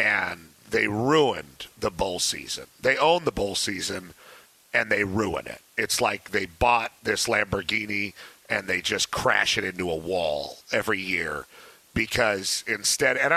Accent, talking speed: American, 155 wpm